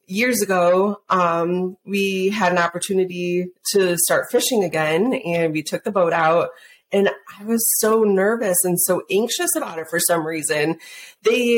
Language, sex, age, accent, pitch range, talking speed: English, female, 20-39, American, 175-230 Hz, 160 wpm